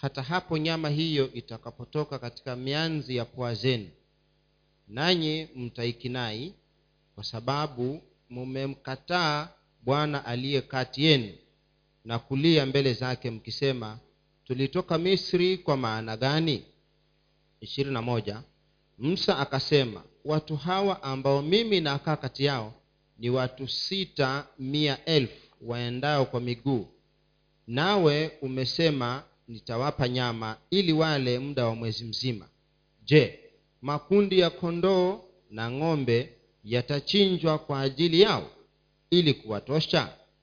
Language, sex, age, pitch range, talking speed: Swahili, male, 40-59, 120-155 Hz, 95 wpm